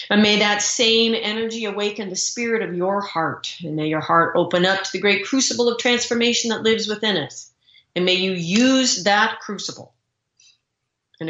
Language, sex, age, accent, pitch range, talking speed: English, female, 40-59, American, 165-225 Hz, 180 wpm